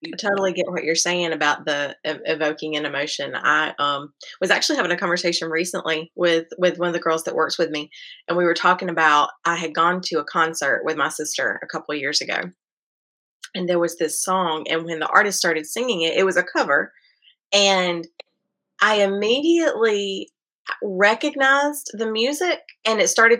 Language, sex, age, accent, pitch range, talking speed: English, female, 20-39, American, 165-205 Hz, 190 wpm